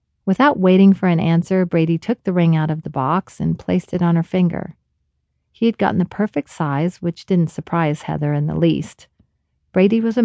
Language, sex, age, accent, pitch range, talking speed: English, female, 40-59, American, 155-190 Hz, 205 wpm